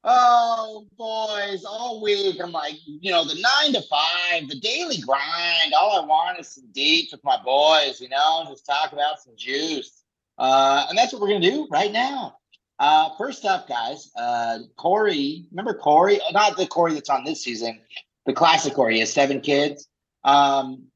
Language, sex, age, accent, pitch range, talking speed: English, male, 30-49, American, 140-200 Hz, 180 wpm